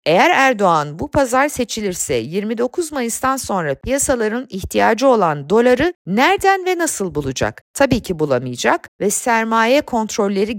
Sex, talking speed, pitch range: female, 125 wpm, 170-270 Hz